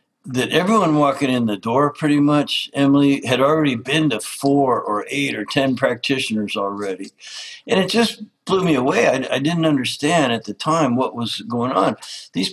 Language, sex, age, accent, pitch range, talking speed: English, male, 60-79, American, 110-145 Hz, 180 wpm